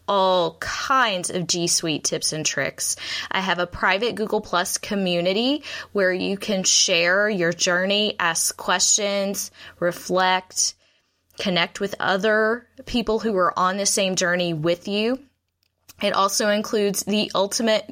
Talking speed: 135 wpm